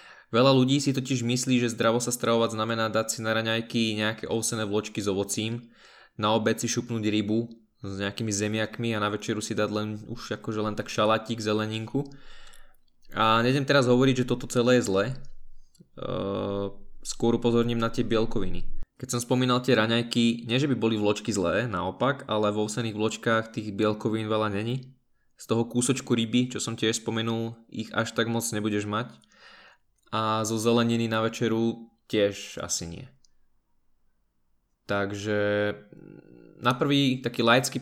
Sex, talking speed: male, 160 wpm